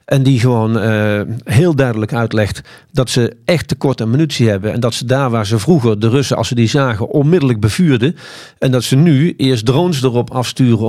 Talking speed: 205 wpm